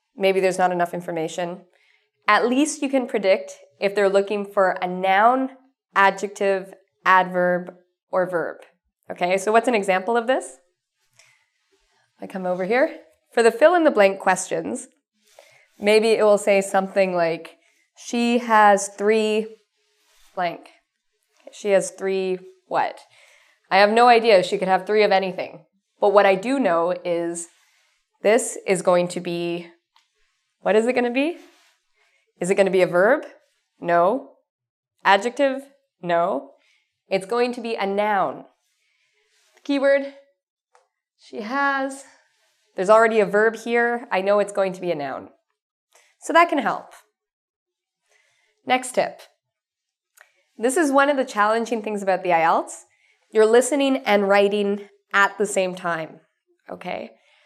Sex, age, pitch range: female, 20-39, 185-255 Hz